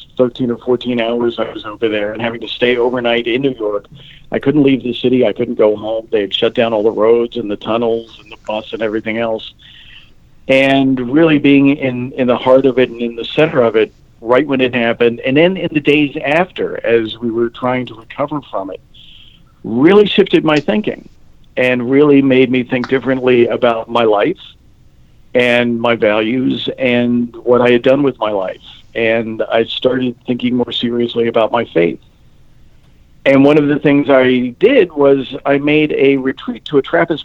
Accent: American